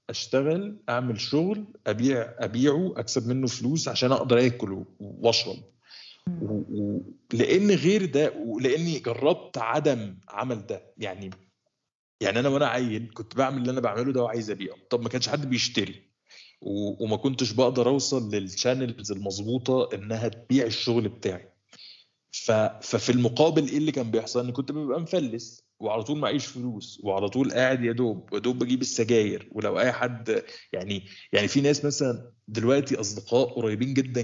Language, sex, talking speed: Arabic, male, 150 wpm